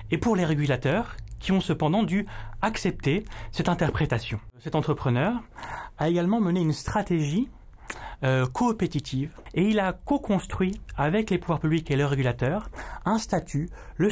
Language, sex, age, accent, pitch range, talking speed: French, male, 30-49, French, 140-200 Hz, 145 wpm